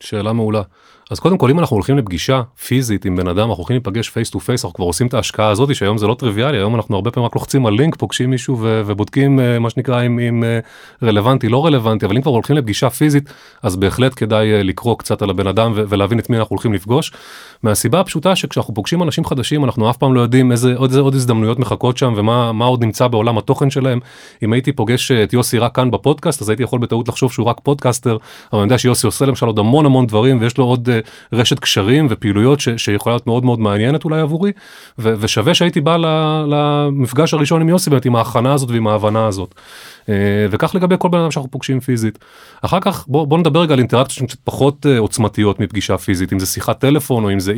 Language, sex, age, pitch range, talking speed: Hebrew, male, 30-49, 110-140 Hz, 180 wpm